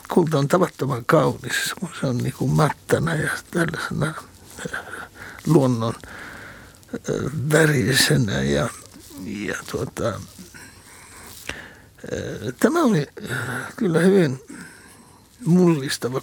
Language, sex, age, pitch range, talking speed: Finnish, male, 60-79, 150-220 Hz, 75 wpm